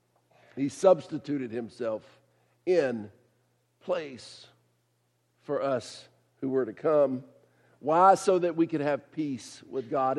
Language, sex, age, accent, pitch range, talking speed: English, male, 50-69, American, 135-185 Hz, 120 wpm